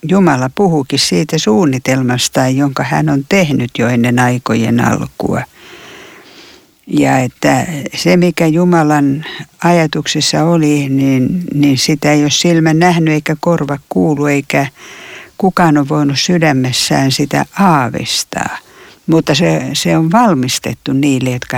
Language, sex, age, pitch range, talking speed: Finnish, female, 60-79, 140-195 Hz, 120 wpm